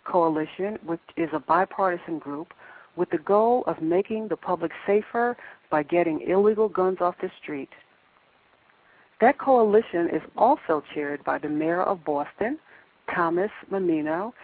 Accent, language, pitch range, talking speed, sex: American, English, 155-215 Hz, 135 wpm, female